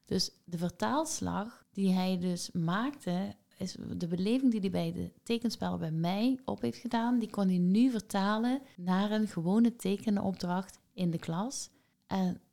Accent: Dutch